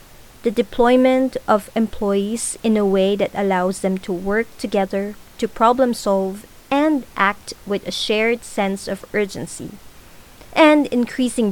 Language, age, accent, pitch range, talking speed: English, 20-39, Filipino, 195-245 Hz, 135 wpm